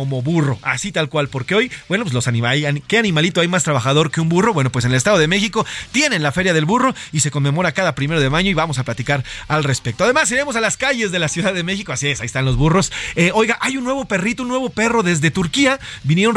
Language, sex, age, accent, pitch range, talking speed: Spanish, male, 30-49, Mexican, 140-200 Hz, 265 wpm